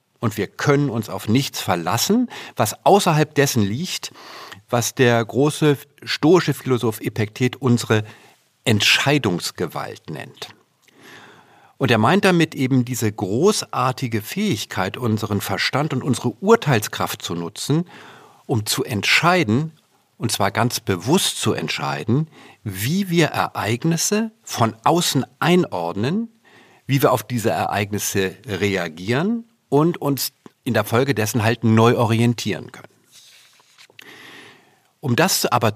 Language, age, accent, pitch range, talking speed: German, 50-69, German, 110-140 Hz, 115 wpm